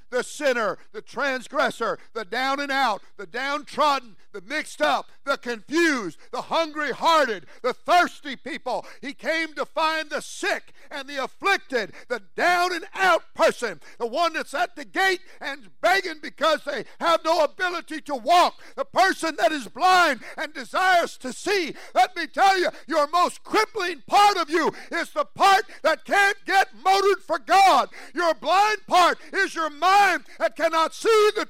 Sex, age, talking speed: male, 50-69, 170 wpm